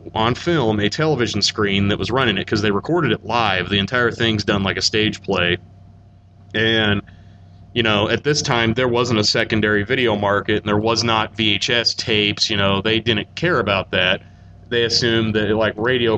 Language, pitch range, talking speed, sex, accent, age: English, 100-115 Hz, 195 wpm, male, American, 30-49